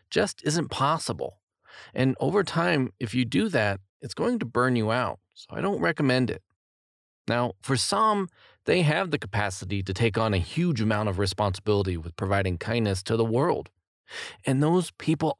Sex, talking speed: male, 175 wpm